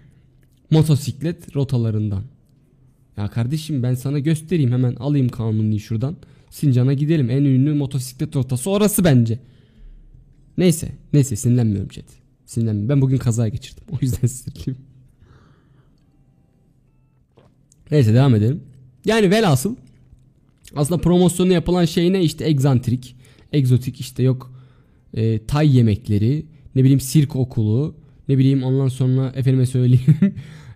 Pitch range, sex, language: 120-145 Hz, male, Turkish